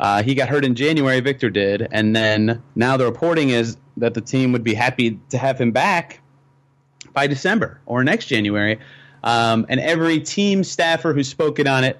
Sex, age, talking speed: male, 30-49, 190 wpm